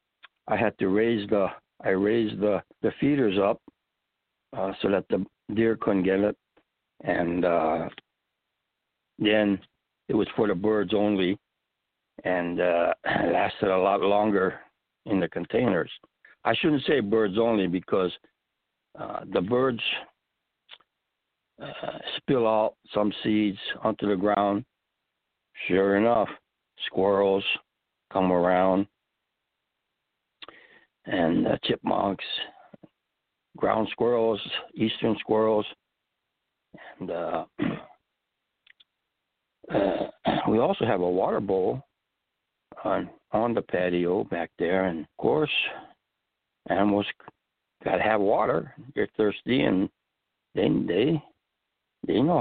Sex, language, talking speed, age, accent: male, English, 110 wpm, 60-79, American